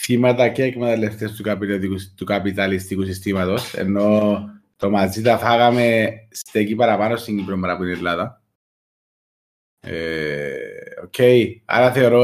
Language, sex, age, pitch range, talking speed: Greek, male, 30-49, 100-135 Hz, 120 wpm